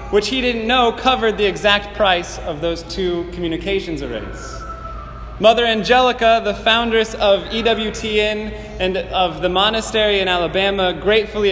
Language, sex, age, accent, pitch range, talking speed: English, male, 20-39, American, 195-235 Hz, 135 wpm